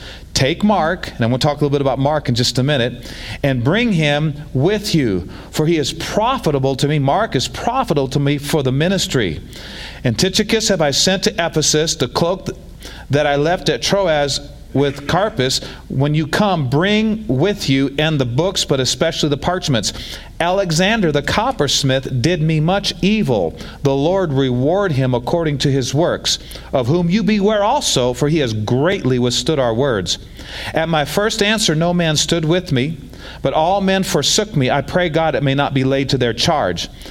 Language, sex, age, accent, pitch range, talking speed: English, male, 40-59, American, 115-165 Hz, 190 wpm